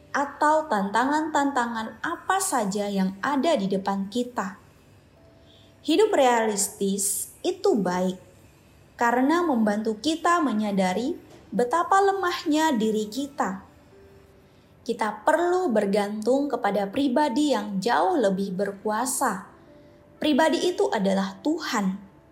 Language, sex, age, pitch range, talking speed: Indonesian, female, 20-39, 205-295 Hz, 90 wpm